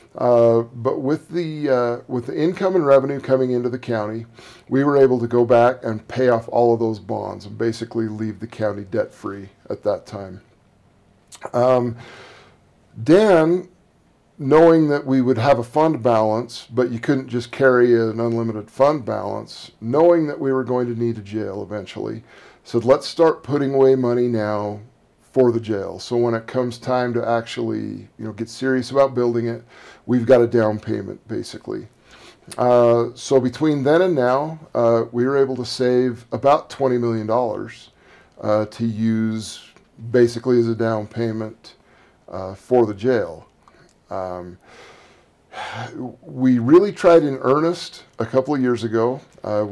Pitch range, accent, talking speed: 115-135 Hz, American, 160 wpm